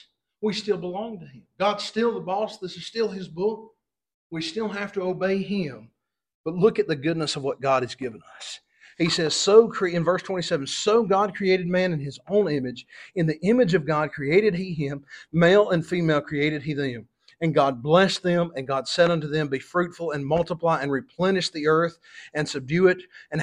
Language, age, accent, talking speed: English, 40-59, American, 205 wpm